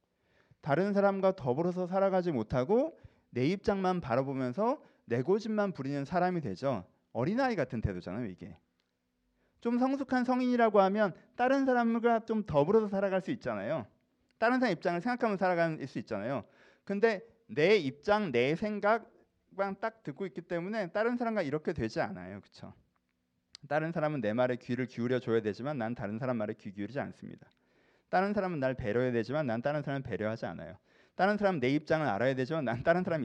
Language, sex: Korean, male